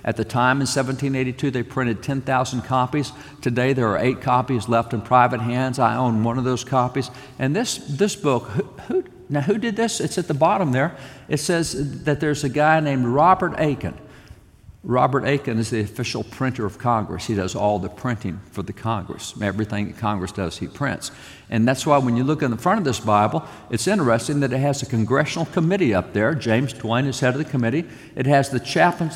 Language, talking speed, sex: English, 210 wpm, male